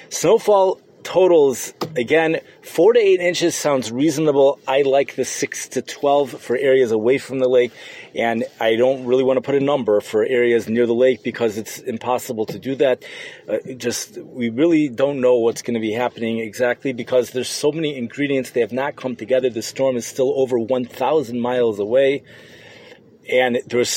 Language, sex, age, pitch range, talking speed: English, male, 30-49, 125-160 Hz, 185 wpm